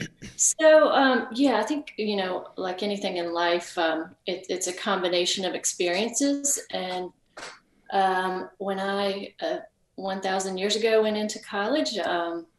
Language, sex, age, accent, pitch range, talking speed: English, female, 40-59, American, 175-205 Hz, 145 wpm